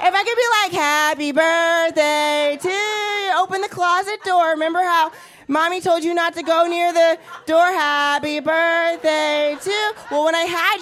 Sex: female